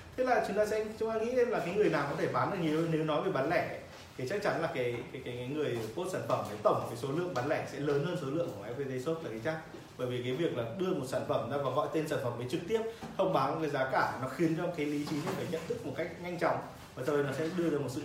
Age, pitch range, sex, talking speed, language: 20-39, 130-170 Hz, male, 320 wpm, Vietnamese